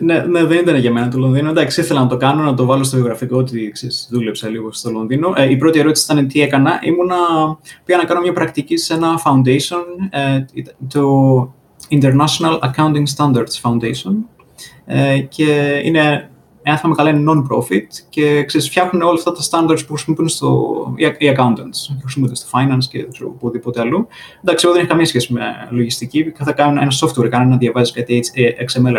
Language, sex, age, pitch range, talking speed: Greek, male, 20-39, 130-165 Hz, 185 wpm